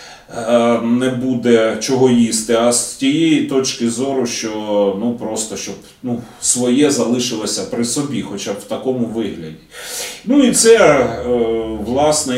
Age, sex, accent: 30-49, male, native